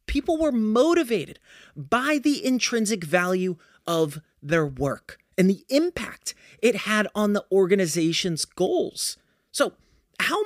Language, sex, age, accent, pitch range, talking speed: English, male, 30-49, American, 190-260 Hz, 120 wpm